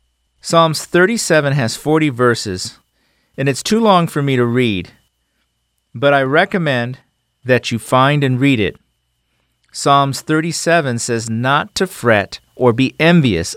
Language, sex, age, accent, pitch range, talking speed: English, male, 40-59, American, 100-140 Hz, 135 wpm